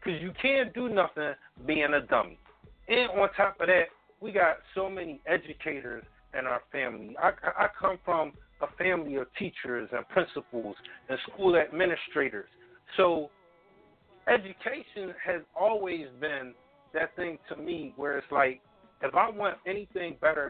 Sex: male